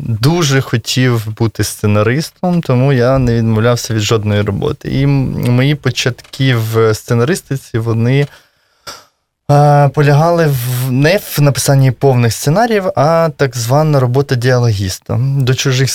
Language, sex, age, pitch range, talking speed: Russian, male, 20-39, 110-140 Hz, 115 wpm